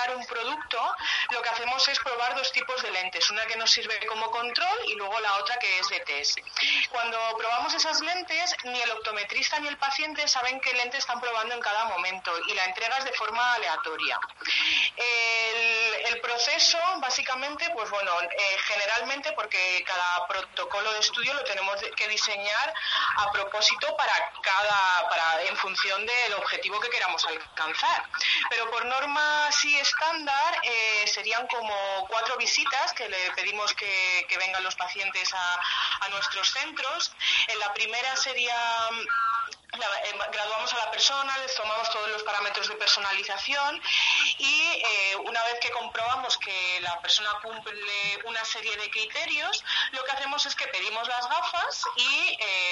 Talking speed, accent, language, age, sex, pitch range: 160 wpm, Spanish, Spanish, 30-49, female, 205-265 Hz